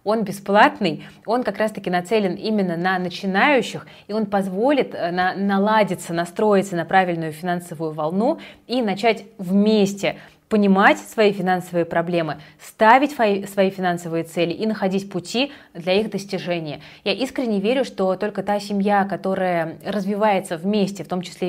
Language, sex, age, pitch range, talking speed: Russian, female, 20-39, 165-210 Hz, 140 wpm